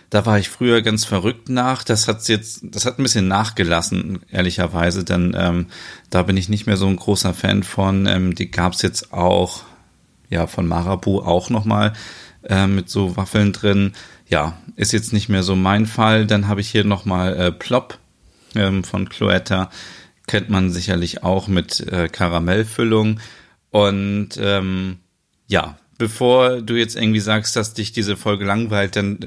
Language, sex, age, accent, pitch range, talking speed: German, male, 30-49, German, 90-105 Hz, 175 wpm